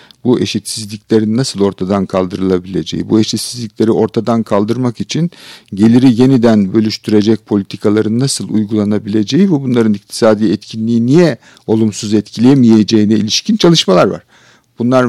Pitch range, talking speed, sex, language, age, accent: 105-125 Hz, 105 wpm, male, Turkish, 50-69, native